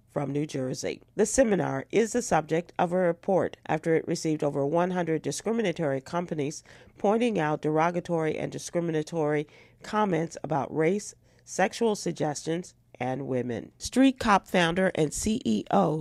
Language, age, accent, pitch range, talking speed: English, 40-59, American, 150-190 Hz, 130 wpm